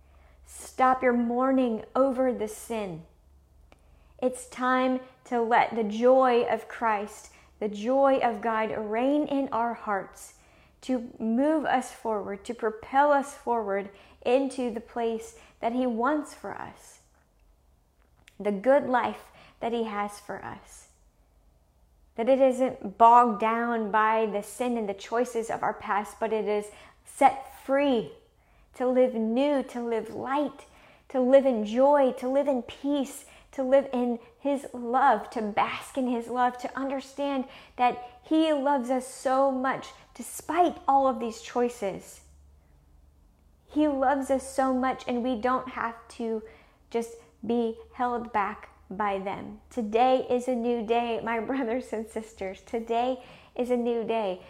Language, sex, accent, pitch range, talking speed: English, female, American, 215-260 Hz, 145 wpm